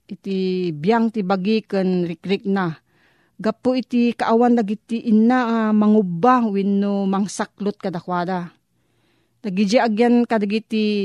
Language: Filipino